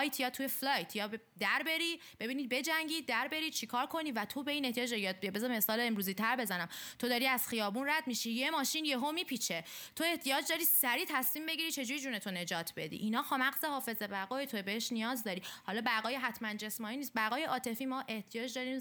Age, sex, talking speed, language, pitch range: 20-39, female, 200 wpm, Persian, 195-265 Hz